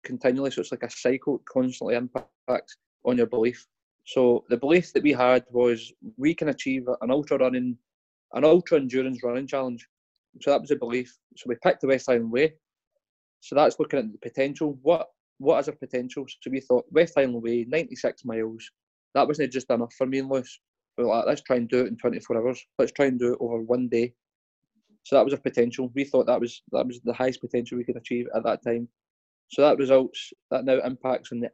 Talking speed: 220 wpm